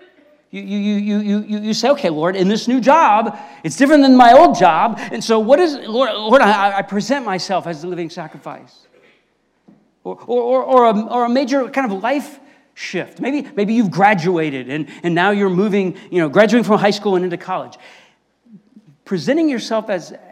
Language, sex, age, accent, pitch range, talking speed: English, male, 50-69, American, 175-240 Hz, 195 wpm